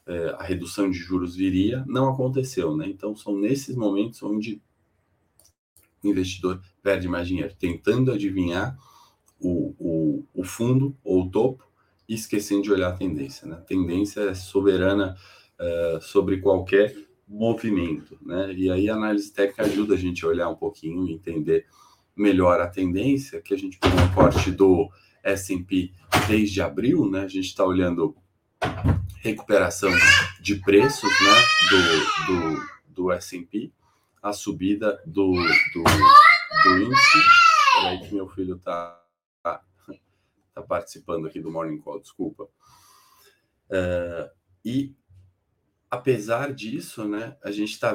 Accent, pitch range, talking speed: Brazilian, 90-115 Hz, 140 wpm